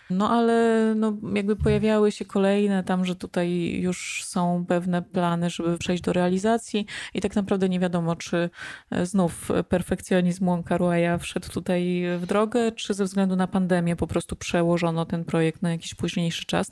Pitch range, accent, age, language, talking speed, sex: 175-205 Hz, native, 20-39, Polish, 160 wpm, female